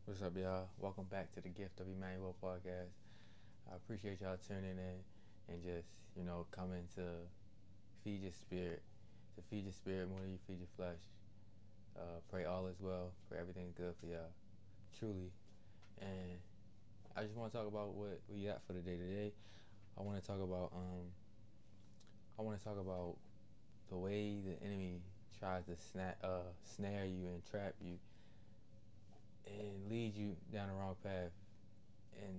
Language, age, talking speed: English, 20-39, 170 wpm